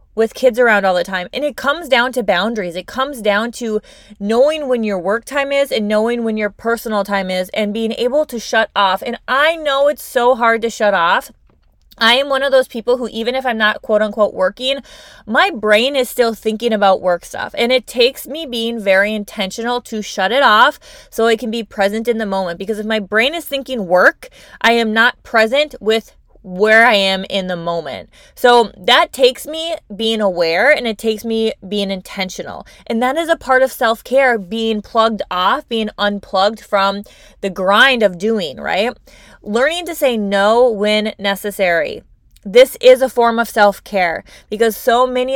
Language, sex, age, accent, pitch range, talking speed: English, female, 20-39, American, 200-250 Hz, 195 wpm